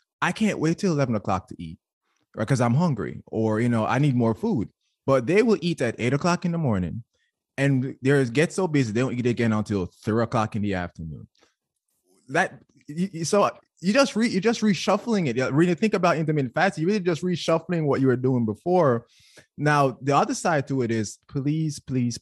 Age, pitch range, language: 20-39, 105-150 Hz, English